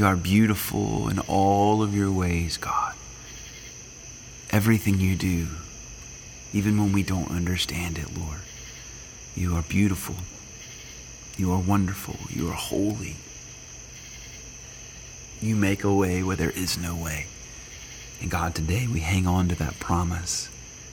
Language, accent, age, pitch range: English, American, 40-59, 90-100 Hz